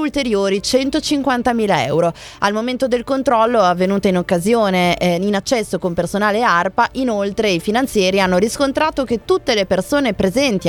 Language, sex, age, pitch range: Italian, female, 20-39, 180-240 Hz